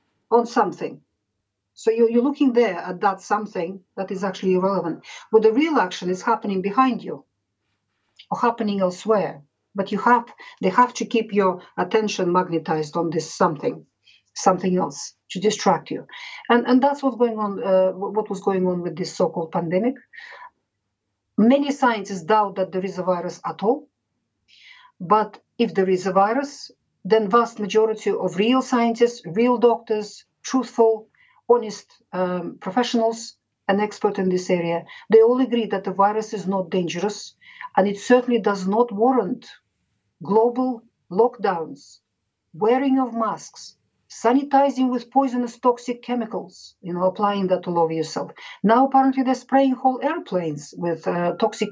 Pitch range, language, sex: 185-240 Hz, English, female